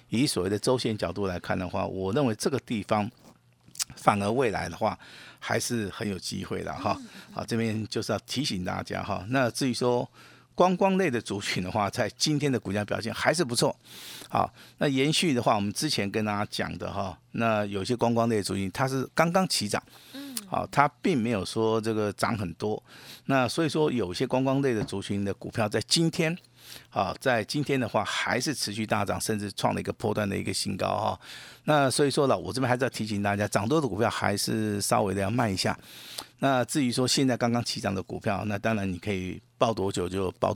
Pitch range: 100-125 Hz